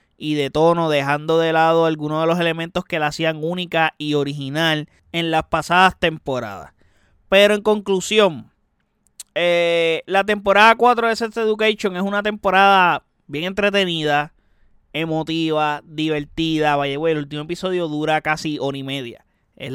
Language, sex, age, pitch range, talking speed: Spanish, male, 30-49, 150-180 Hz, 145 wpm